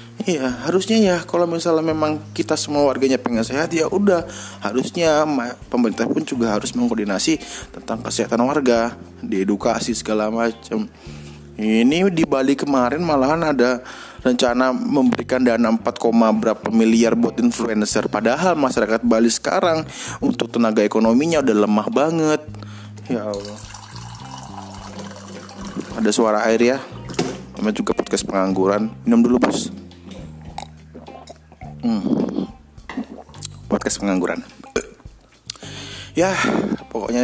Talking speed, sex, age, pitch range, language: 110 wpm, male, 20-39, 100-125 Hz, Indonesian